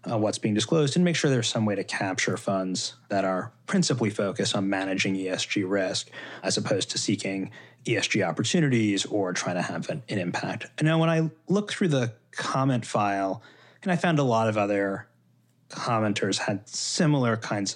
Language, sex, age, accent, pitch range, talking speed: English, male, 30-49, American, 100-140 Hz, 180 wpm